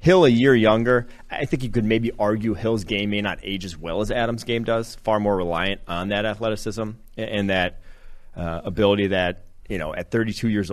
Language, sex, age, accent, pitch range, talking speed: English, male, 30-49, American, 95-115 Hz, 205 wpm